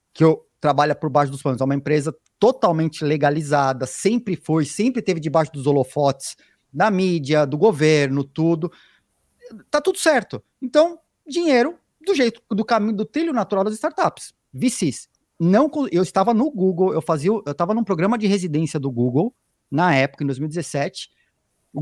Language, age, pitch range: Portuguese, 30-49, 165-250 Hz